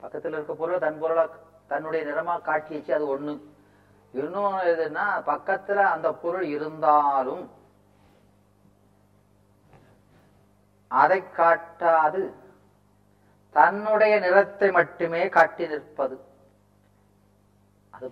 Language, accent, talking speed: Tamil, native, 80 wpm